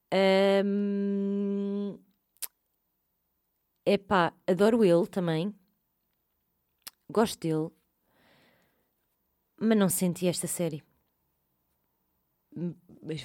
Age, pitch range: 20-39, 175-230 Hz